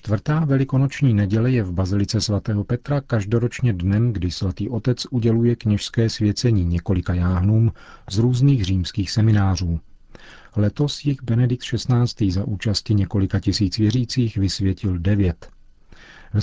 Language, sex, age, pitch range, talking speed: Czech, male, 40-59, 90-105 Hz, 125 wpm